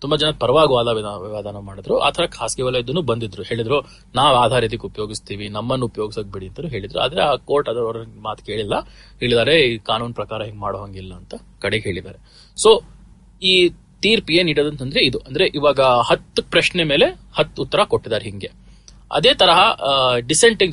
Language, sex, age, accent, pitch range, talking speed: Kannada, male, 30-49, native, 110-135 Hz, 135 wpm